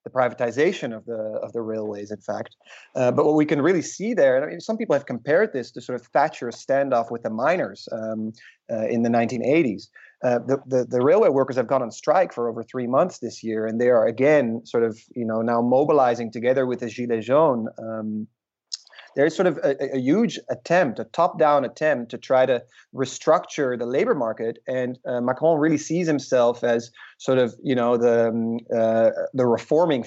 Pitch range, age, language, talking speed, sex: 115-135 Hz, 30-49, English, 210 wpm, male